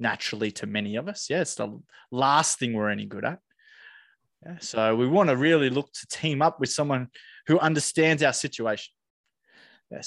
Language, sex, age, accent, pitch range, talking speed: English, male, 20-39, Australian, 120-160 Hz, 185 wpm